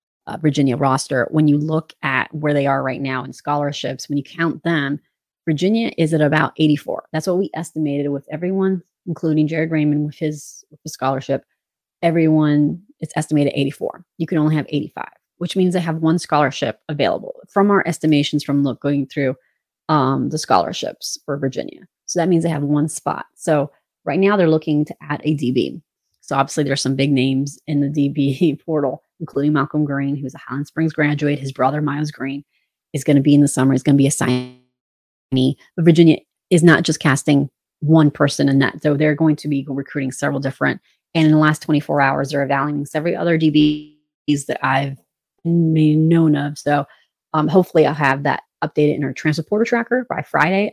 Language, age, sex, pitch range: English, 30-49, female, 140-160 Hz